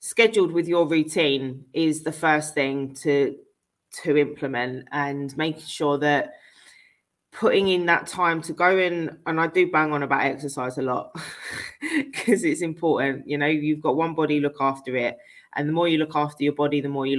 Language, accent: English, British